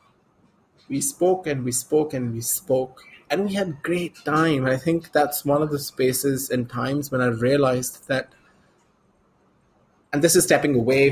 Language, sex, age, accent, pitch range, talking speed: English, male, 20-39, Indian, 120-145 Hz, 175 wpm